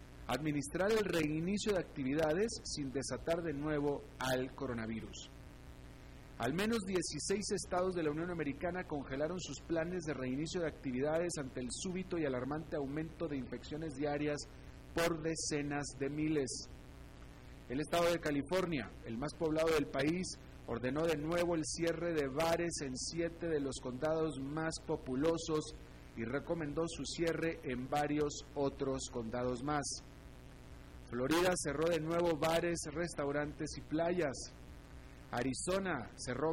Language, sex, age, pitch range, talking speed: Spanish, male, 40-59, 140-170 Hz, 135 wpm